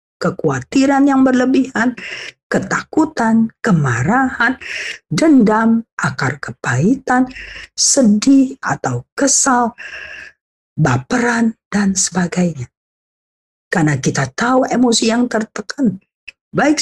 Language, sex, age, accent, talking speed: Indonesian, female, 50-69, native, 75 wpm